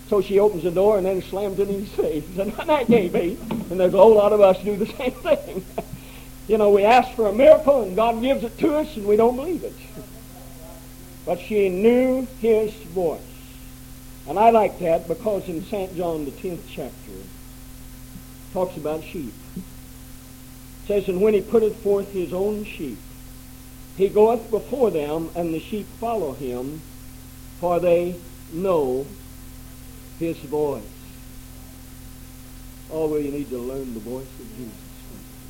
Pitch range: 130-190 Hz